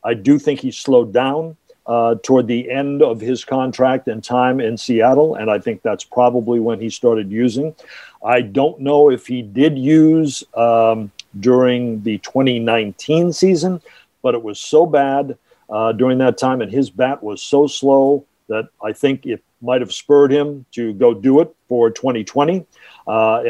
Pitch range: 115-140 Hz